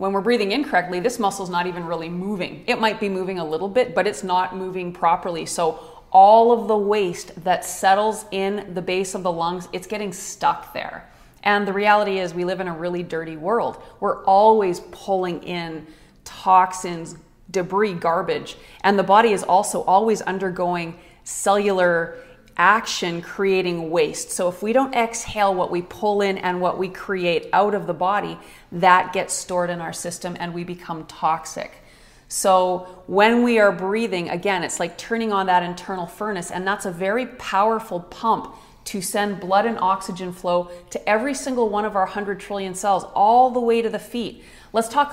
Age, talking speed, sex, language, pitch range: 30-49, 180 wpm, female, English, 180-210 Hz